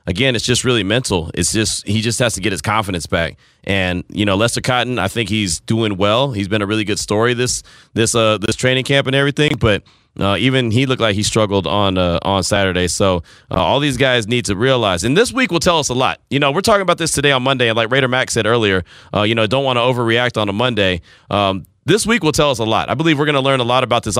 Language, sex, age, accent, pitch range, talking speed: English, male, 30-49, American, 110-140 Hz, 275 wpm